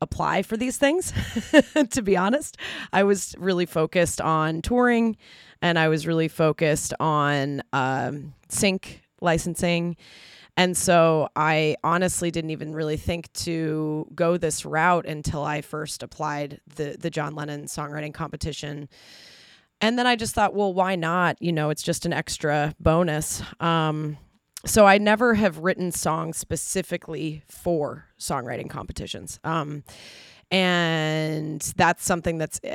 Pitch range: 155-185 Hz